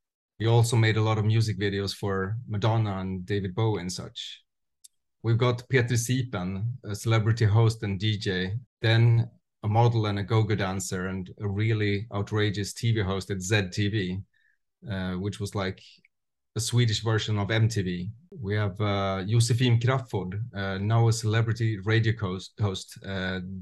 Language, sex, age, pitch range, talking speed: English, male, 30-49, 100-115 Hz, 160 wpm